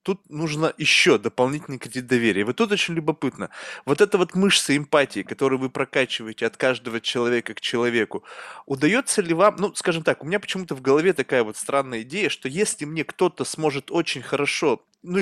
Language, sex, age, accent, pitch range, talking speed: Russian, male, 20-39, native, 145-190 Hz, 180 wpm